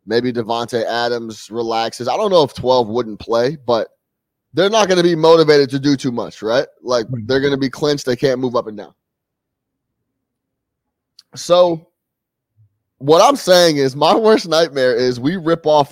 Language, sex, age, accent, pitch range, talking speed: English, male, 20-39, American, 120-160 Hz, 175 wpm